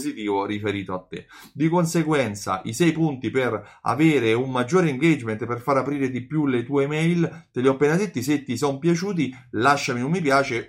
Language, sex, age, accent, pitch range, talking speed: Italian, male, 30-49, native, 110-155 Hz, 190 wpm